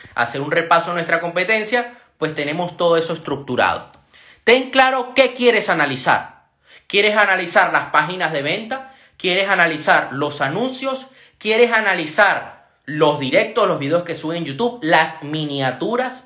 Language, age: Spanish, 20-39